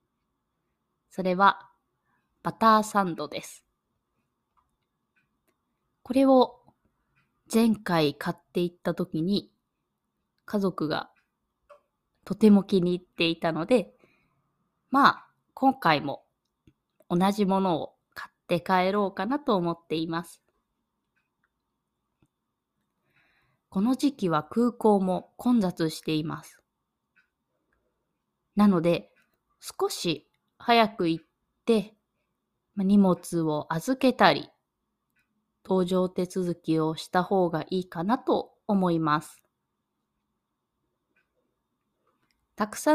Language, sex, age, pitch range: Japanese, female, 20-39, 165-215 Hz